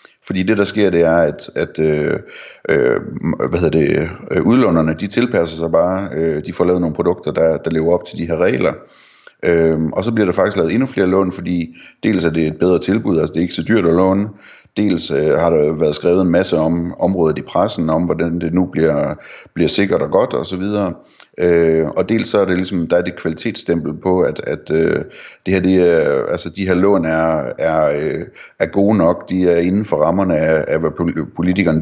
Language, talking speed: Danish, 225 wpm